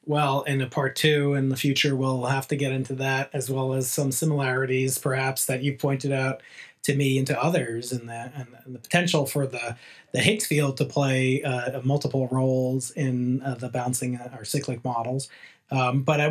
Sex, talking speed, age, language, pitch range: male, 200 wpm, 30-49, English, 135-160 Hz